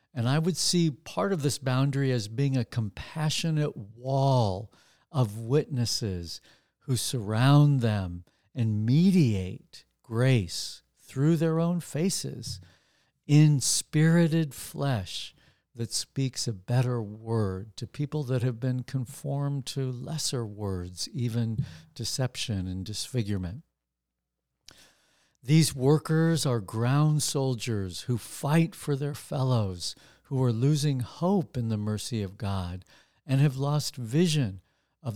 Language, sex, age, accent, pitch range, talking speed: English, male, 50-69, American, 110-145 Hz, 120 wpm